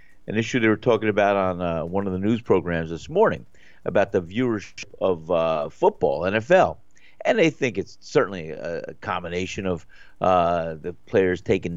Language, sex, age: English, male, 50-69